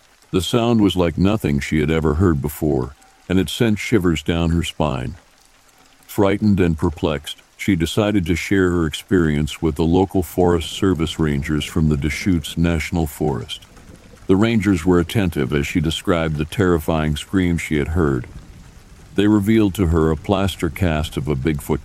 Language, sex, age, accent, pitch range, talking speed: English, male, 60-79, American, 75-95 Hz, 165 wpm